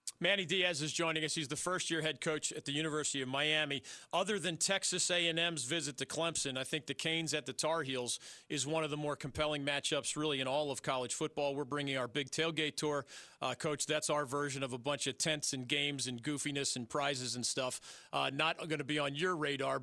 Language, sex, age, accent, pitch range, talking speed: English, male, 40-59, American, 145-185 Hz, 225 wpm